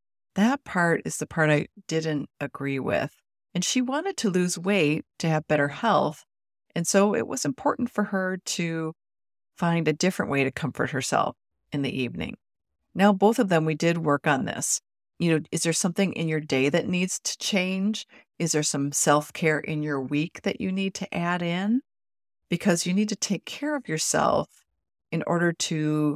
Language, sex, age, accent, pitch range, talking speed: English, female, 40-59, American, 145-195 Hz, 190 wpm